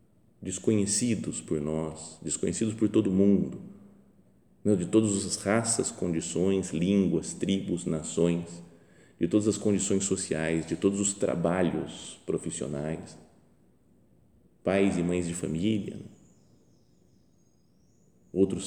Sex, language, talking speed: male, Portuguese, 100 wpm